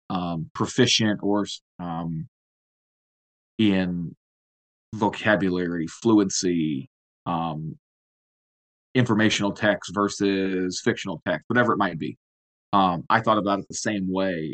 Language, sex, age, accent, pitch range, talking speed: English, male, 30-49, American, 90-105 Hz, 105 wpm